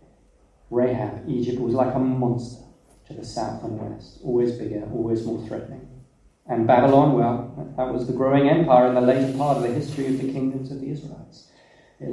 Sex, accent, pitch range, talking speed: male, British, 115-155 Hz, 190 wpm